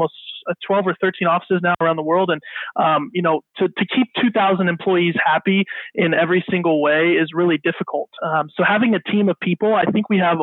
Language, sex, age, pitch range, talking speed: English, male, 30-49, 165-190 Hz, 220 wpm